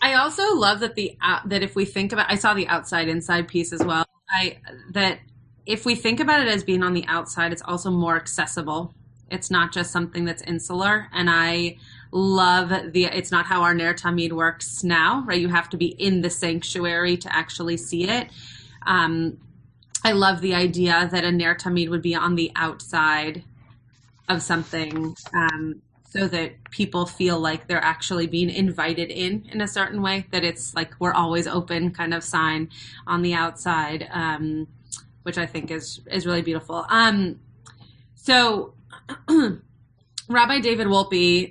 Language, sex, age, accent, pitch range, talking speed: English, female, 20-39, American, 160-185 Hz, 175 wpm